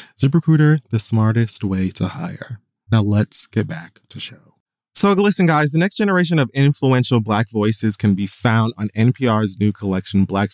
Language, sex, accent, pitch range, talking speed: English, male, American, 95-130 Hz, 170 wpm